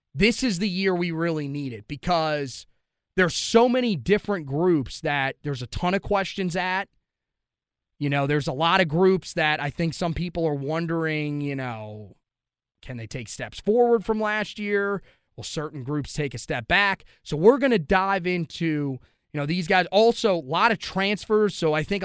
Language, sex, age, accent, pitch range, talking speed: English, male, 30-49, American, 150-195 Hz, 190 wpm